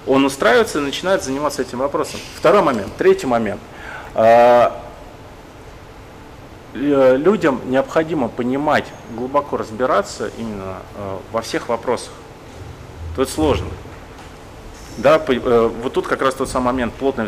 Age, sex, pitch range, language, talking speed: 30-49, male, 100-130 Hz, Russian, 105 wpm